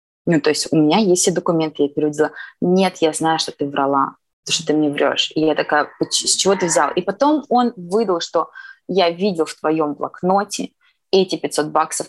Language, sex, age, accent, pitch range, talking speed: Russian, female, 20-39, native, 155-200 Hz, 205 wpm